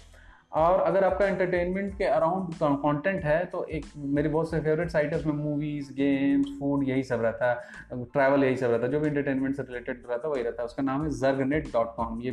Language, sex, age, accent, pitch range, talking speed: Hindi, male, 20-39, native, 130-160 Hz, 195 wpm